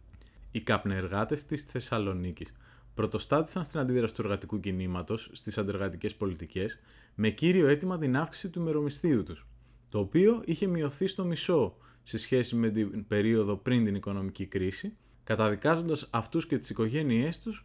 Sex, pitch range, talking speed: male, 105-150 Hz, 145 wpm